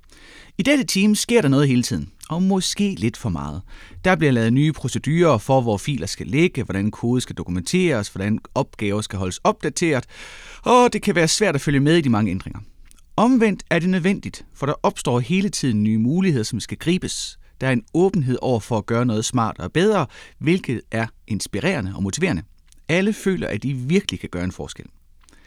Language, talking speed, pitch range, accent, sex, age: Danish, 200 wpm, 105-175 Hz, native, male, 30-49